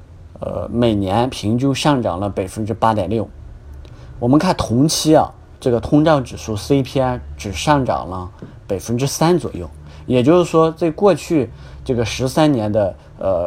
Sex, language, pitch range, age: male, Chinese, 100-135 Hz, 30-49